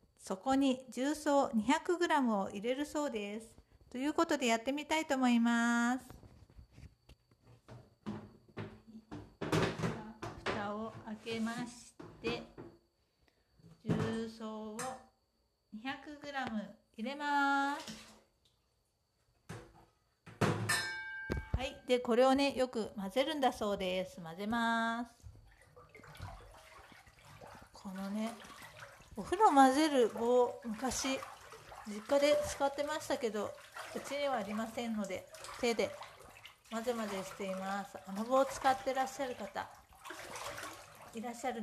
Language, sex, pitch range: Japanese, female, 215-275 Hz